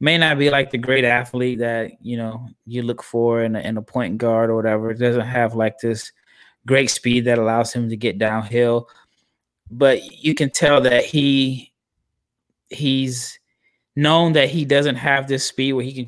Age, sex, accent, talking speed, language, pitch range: 20-39, male, American, 190 wpm, English, 120-135 Hz